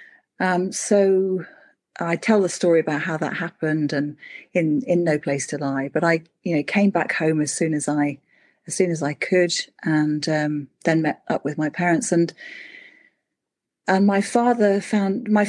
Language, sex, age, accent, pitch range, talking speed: English, female, 40-59, British, 155-200 Hz, 180 wpm